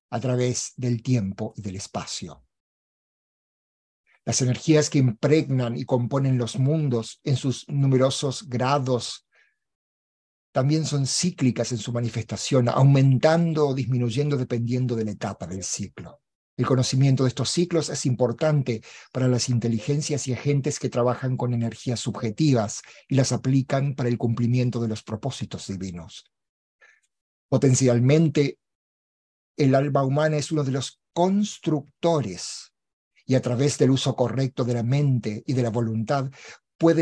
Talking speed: 135 wpm